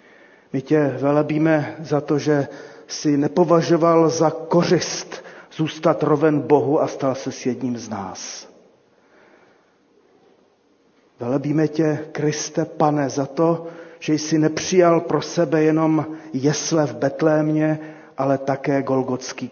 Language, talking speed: Czech, 115 wpm